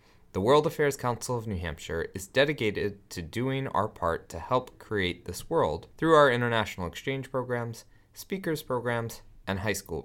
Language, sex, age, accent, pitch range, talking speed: English, male, 30-49, American, 95-135 Hz, 165 wpm